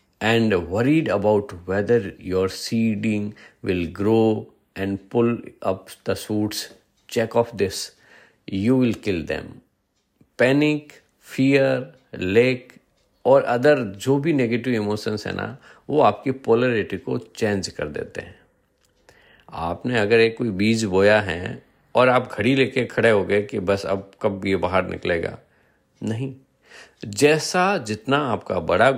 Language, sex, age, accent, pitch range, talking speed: Hindi, male, 50-69, native, 100-135 Hz, 135 wpm